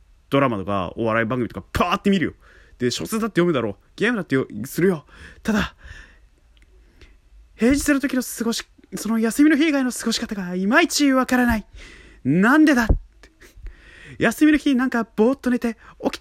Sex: male